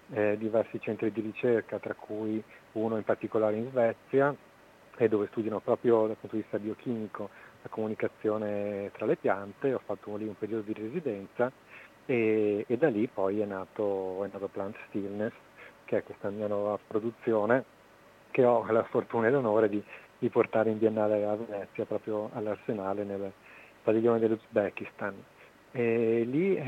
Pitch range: 105-120 Hz